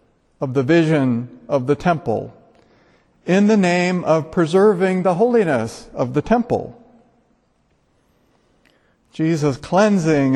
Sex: male